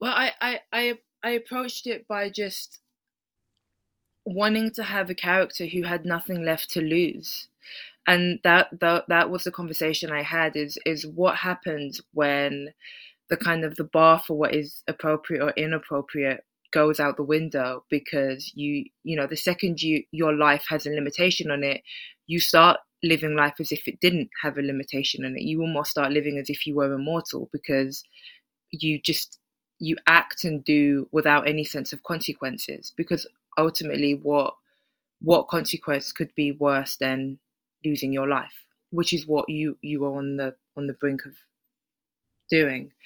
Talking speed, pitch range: 170 wpm, 145-170 Hz